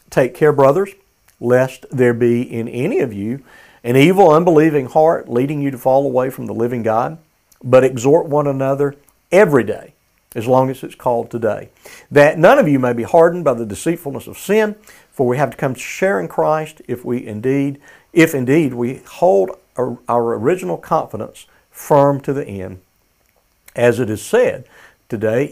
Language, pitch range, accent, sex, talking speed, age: English, 110-145 Hz, American, male, 180 wpm, 50-69